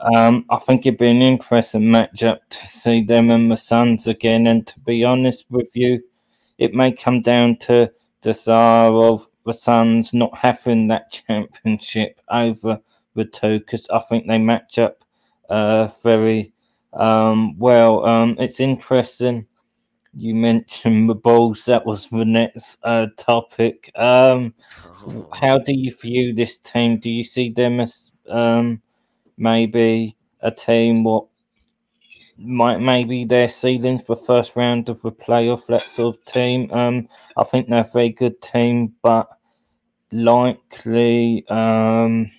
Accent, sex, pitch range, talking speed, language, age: British, male, 115-120 Hz, 145 wpm, English, 20-39